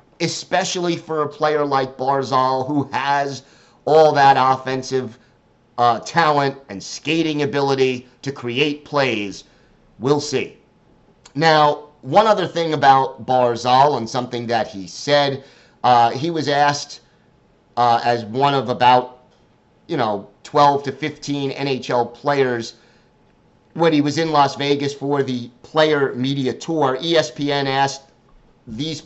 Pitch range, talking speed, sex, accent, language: 125-160 Hz, 130 wpm, male, American, English